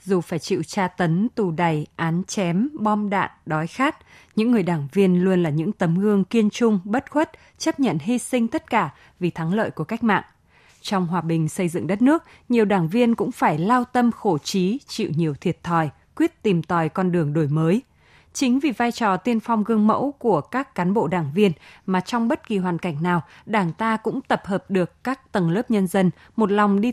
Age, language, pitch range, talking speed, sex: 20-39, Vietnamese, 175-235 Hz, 225 wpm, female